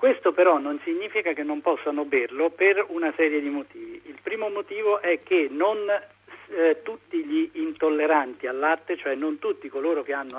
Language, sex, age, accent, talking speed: Italian, male, 50-69, native, 180 wpm